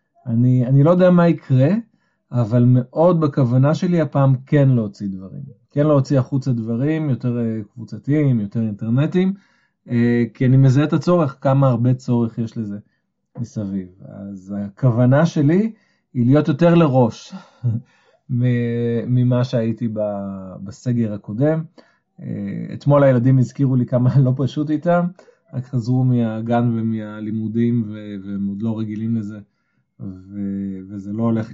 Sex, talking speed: male, 120 wpm